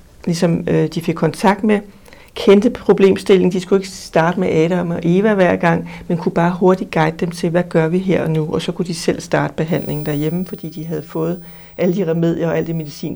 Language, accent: Danish, native